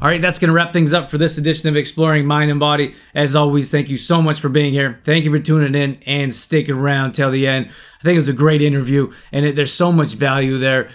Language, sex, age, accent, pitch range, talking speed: English, male, 20-39, American, 130-150 Hz, 275 wpm